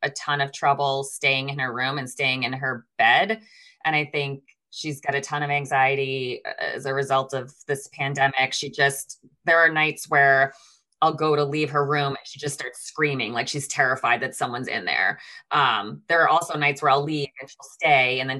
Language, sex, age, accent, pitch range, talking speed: English, female, 20-39, American, 135-155 Hz, 210 wpm